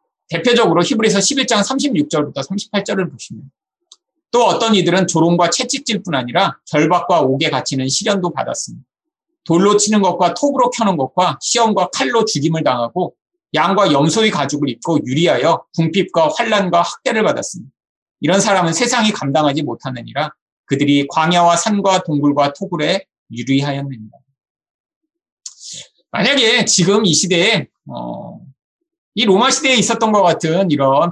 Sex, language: male, Korean